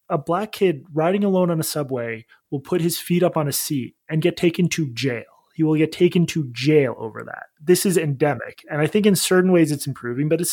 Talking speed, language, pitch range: 240 wpm, English, 140-180 Hz